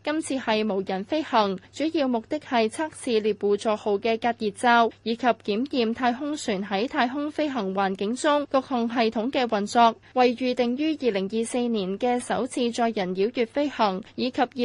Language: Chinese